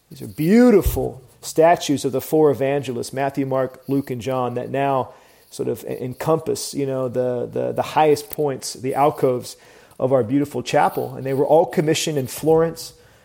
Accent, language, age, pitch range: American, English, 40-59, 130-155 Hz